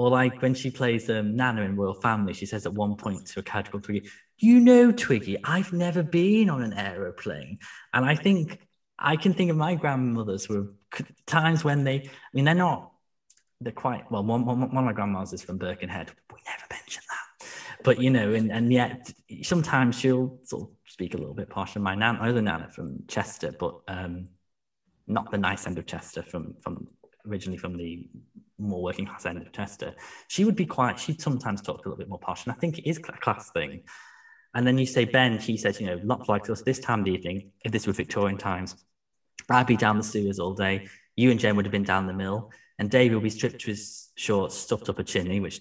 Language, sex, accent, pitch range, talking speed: English, male, British, 100-130 Hz, 225 wpm